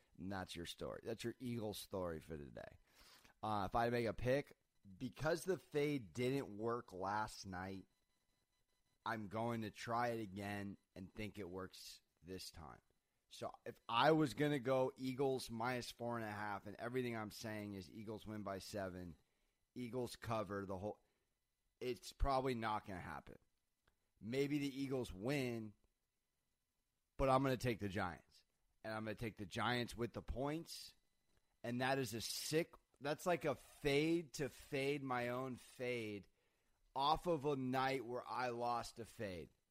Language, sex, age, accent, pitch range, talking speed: English, male, 30-49, American, 100-130 Hz, 170 wpm